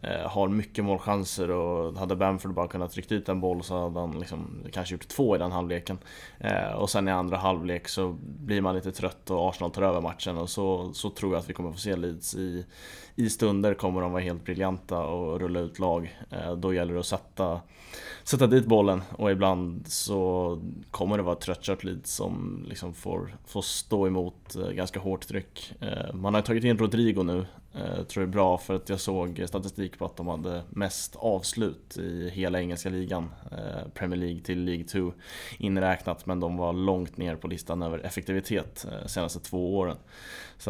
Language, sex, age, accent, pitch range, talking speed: Swedish, male, 20-39, Norwegian, 90-100 Hz, 195 wpm